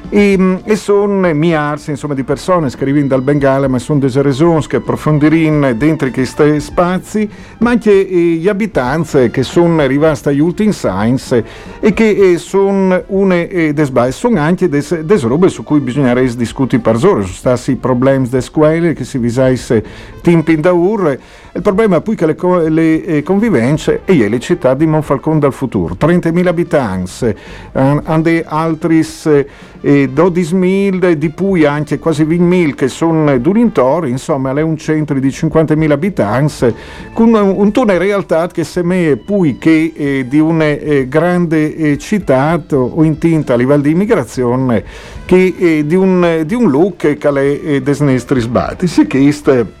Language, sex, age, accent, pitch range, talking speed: Italian, male, 50-69, native, 135-180 Hz, 160 wpm